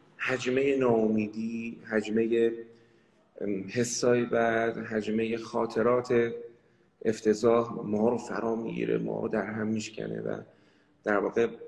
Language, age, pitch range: Persian, 30-49, 110-145 Hz